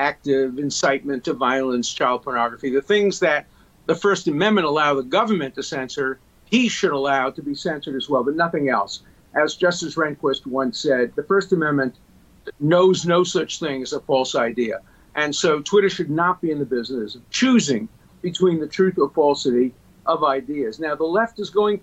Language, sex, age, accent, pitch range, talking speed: English, male, 50-69, American, 140-200 Hz, 185 wpm